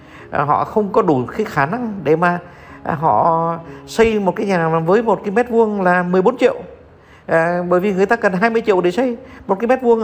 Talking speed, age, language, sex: 215 wpm, 60-79, Vietnamese, male